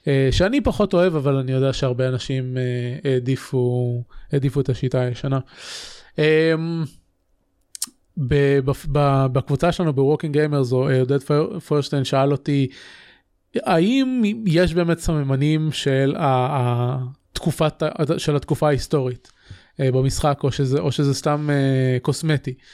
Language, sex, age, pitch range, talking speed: Hebrew, male, 20-39, 135-170 Hz, 125 wpm